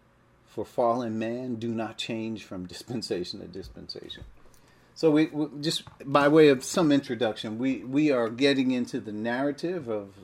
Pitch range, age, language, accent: 110-135 Hz, 50-69, English, American